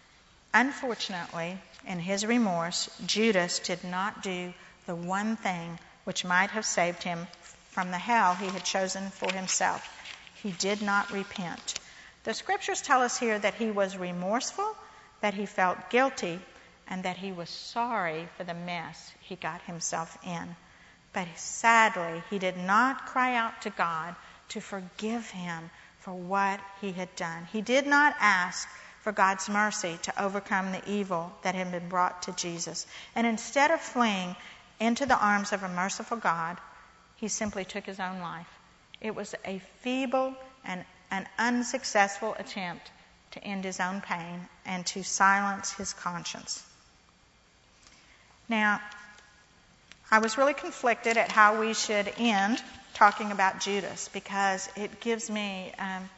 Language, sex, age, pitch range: English, female, 50-69, 180-220 Hz